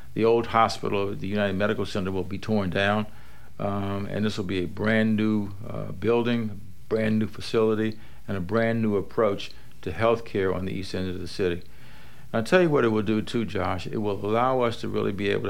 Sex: male